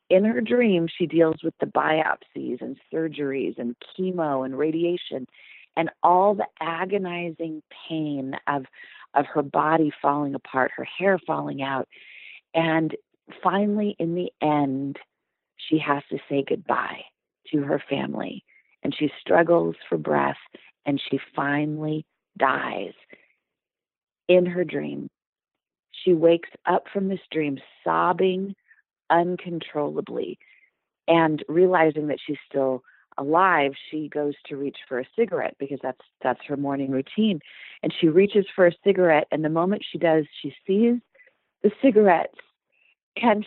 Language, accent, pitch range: English, American, 145-185 Hz